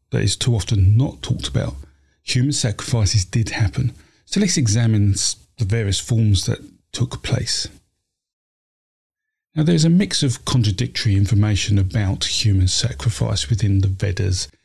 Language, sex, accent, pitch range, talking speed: English, male, British, 100-125 Hz, 140 wpm